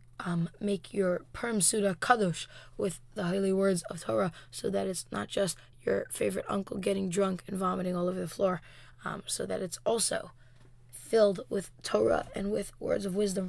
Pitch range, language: 180-215 Hz, English